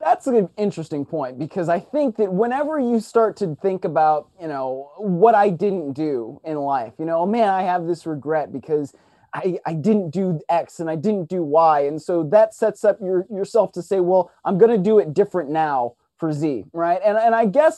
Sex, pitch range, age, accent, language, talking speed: male, 180-255 Hz, 30-49, American, English, 220 wpm